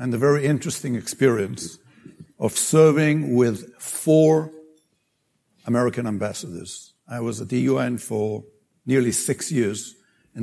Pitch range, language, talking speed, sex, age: 115-140 Hz, English, 120 wpm, male, 60-79